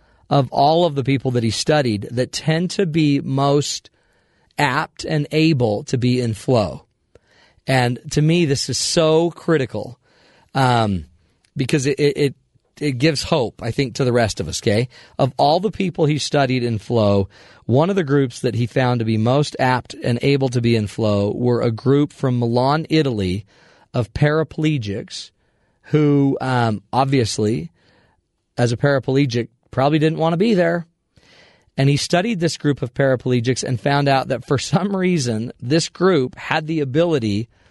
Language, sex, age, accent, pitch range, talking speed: English, male, 40-59, American, 120-150 Hz, 170 wpm